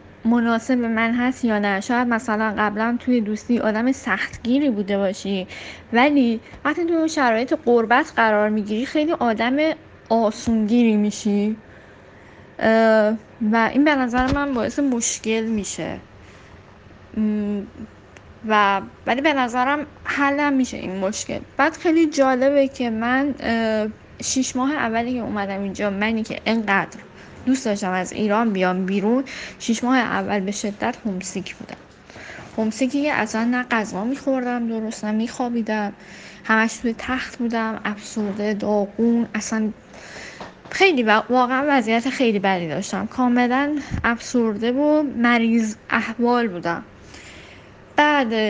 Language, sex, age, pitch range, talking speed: Persian, female, 10-29, 210-260 Hz, 120 wpm